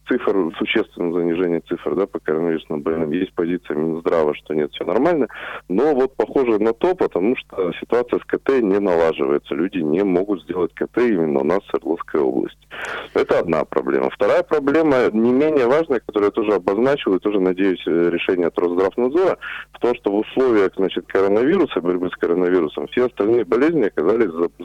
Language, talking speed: Russian, 170 wpm